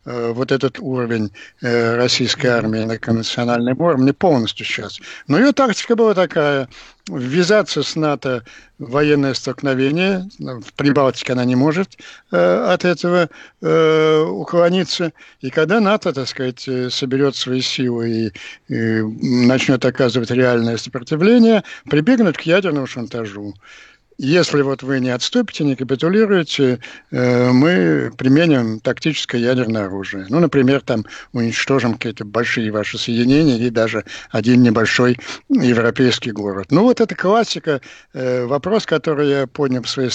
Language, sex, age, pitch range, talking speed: Russian, male, 60-79, 120-160 Hz, 125 wpm